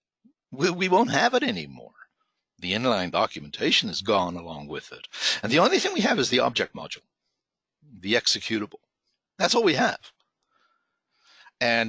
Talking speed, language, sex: 150 wpm, English, male